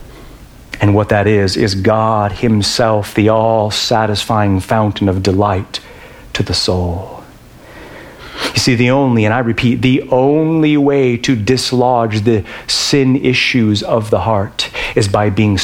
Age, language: 40-59, English